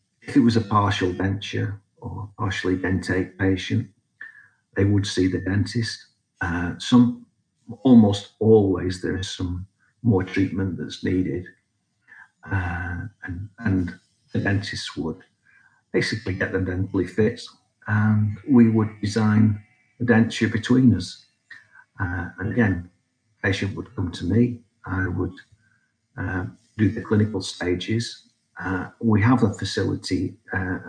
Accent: British